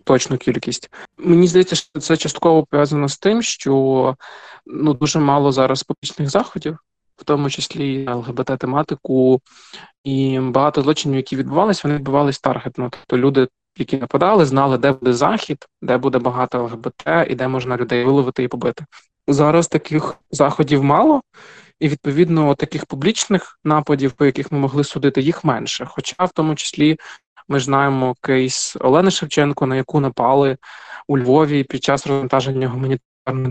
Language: Ukrainian